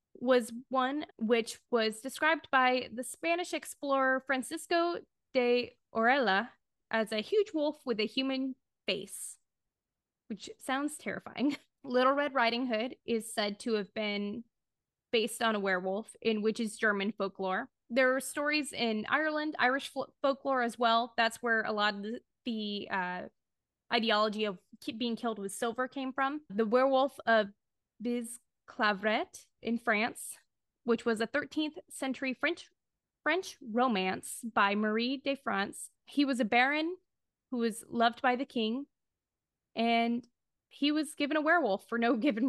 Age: 20-39